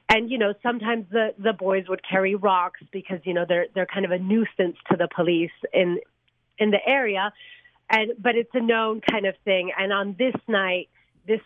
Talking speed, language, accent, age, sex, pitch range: 205 wpm, English, American, 30-49, female, 175-210 Hz